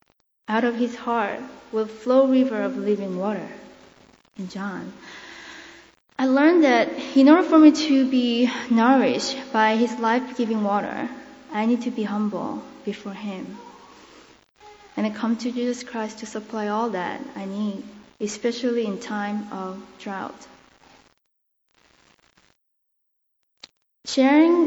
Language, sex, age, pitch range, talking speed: English, female, 20-39, 215-265 Hz, 125 wpm